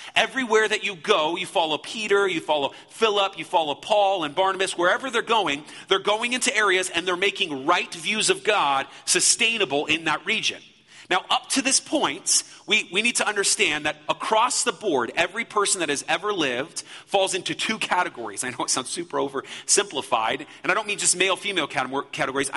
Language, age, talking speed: English, 40-59, 190 wpm